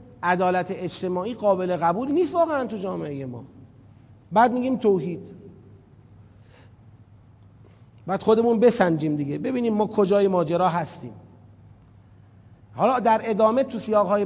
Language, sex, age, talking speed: Persian, male, 30-49, 110 wpm